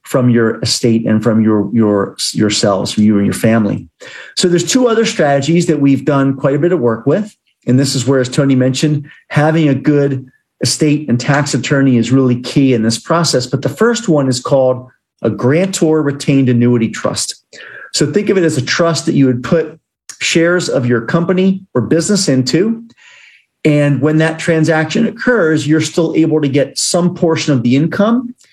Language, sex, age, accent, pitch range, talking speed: English, male, 40-59, American, 125-160 Hz, 190 wpm